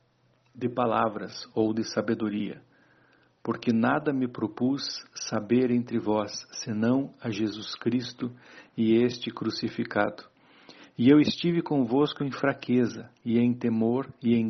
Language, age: Portuguese, 50-69